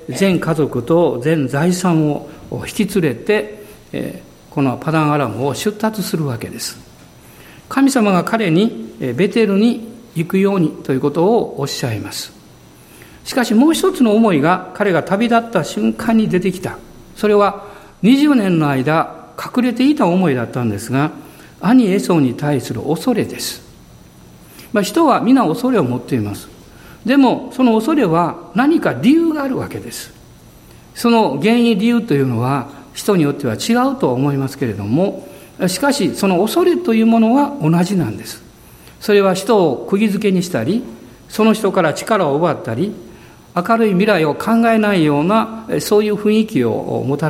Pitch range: 145-220 Hz